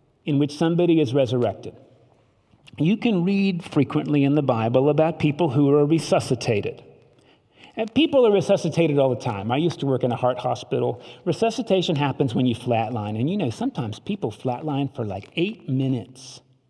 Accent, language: American, English